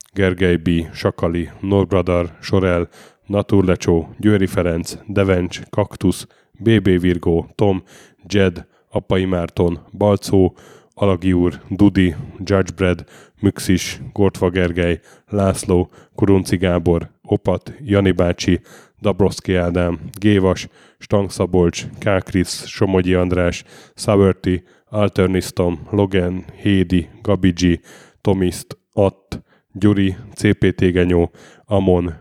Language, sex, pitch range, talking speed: Hungarian, male, 90-100 Hz, 90 wpm